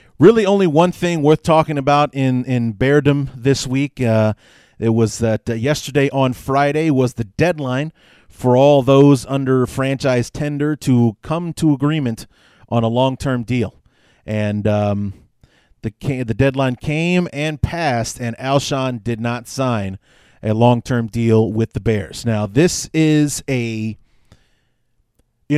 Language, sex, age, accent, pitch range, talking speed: English, male, 30-49, American, 120-150 Hz, 145 wpm